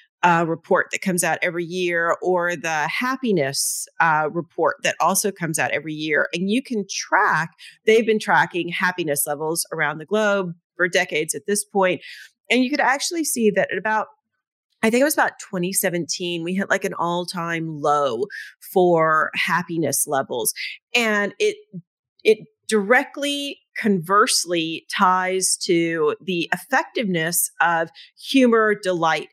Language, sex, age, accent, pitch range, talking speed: English, female, 40-59, American, 175-245 Hz, 145 wpm